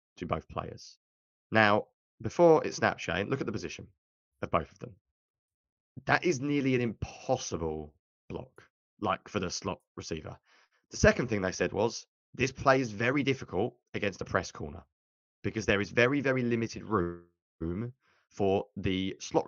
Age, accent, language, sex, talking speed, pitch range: 30-49, British, English, male, 160 wpm, 90-125 Hz